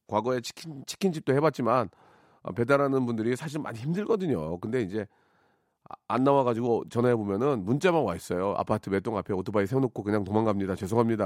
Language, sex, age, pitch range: Korean, male, 40-59, 110-150 Hz